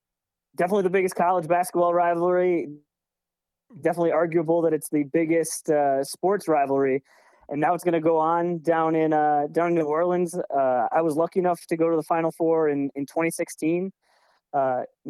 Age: 20-39